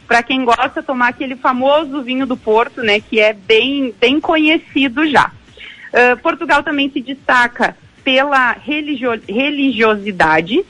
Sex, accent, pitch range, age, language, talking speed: female, Brazilian, 245-300 Hz, 40-59, Portuguese, 135 wpm